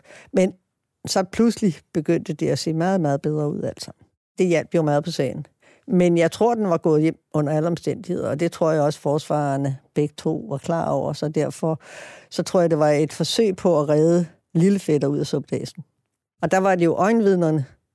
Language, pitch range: Danish, 160-200 Hz